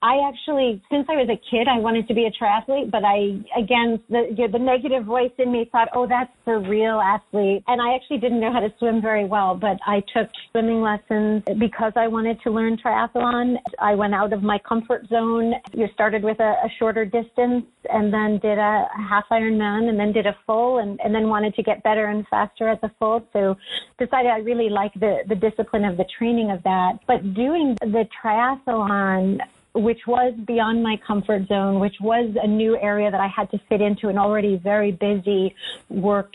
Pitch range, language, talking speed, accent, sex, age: 205-235 Hz, English, 210 wpm, American, female, 40-59